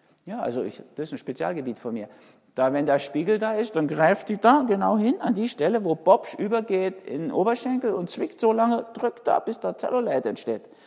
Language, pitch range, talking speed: German, 160-240 Hz, 220 wpm